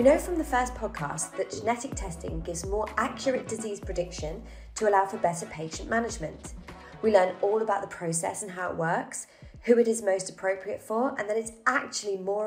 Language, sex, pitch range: English, female, 180-225 Hz